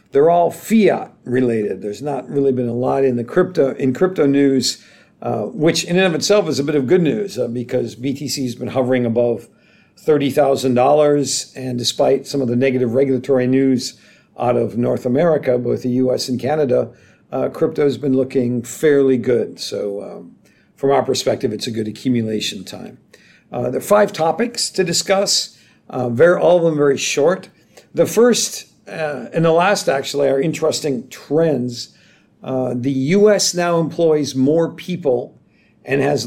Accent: American